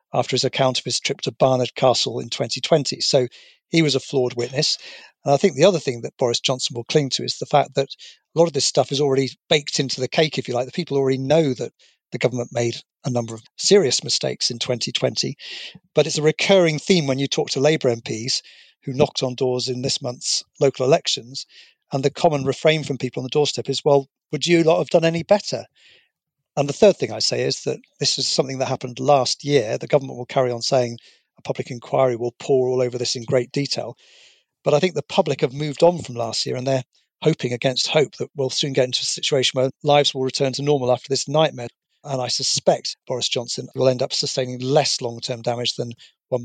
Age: 50-69